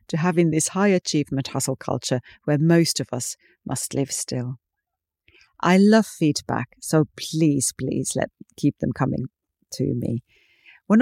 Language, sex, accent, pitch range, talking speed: English, female, British, 140-195 Hz, 145 wpm